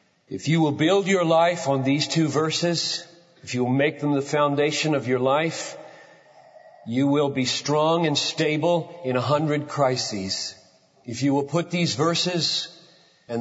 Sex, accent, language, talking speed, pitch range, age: male, American, English, 165 wpm, 150-190 Hz, 40-59